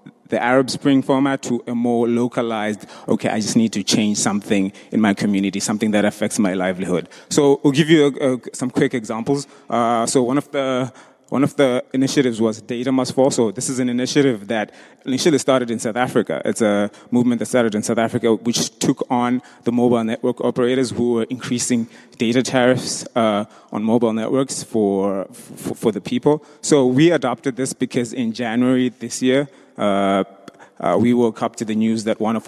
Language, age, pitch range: German, 20-39, 115-135 Hz